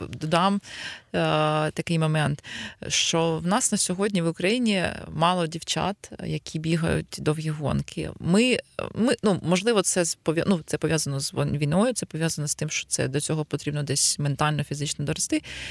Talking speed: 155 wpm